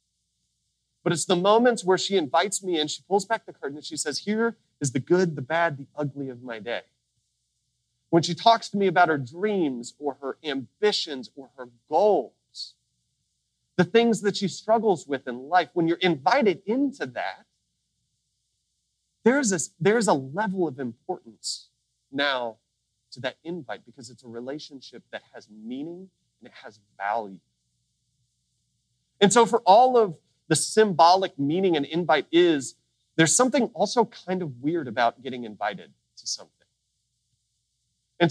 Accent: American